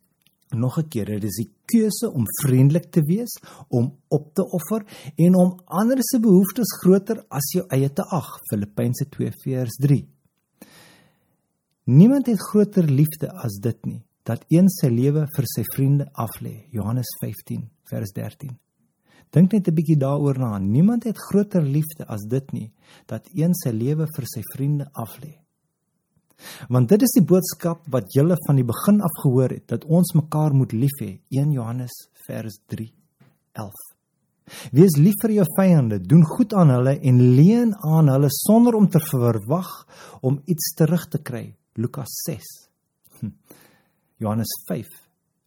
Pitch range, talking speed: 130-180 Hz, 155 wpm